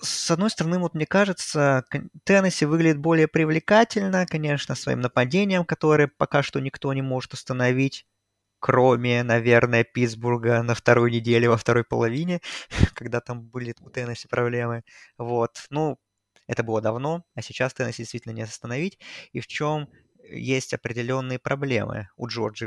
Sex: male